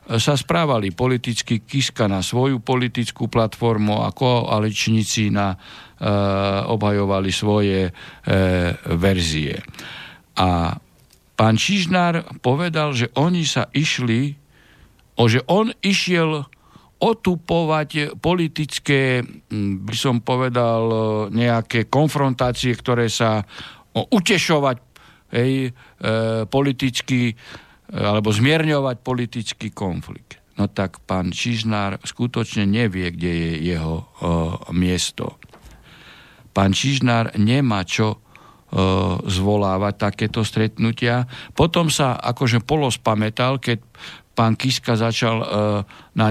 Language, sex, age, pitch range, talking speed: Slovak, male, 60-79, 105-130 Hz, 95 wpm